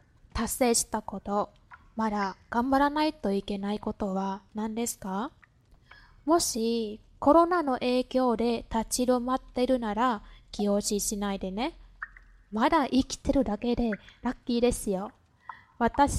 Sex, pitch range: female, 210-265 Hz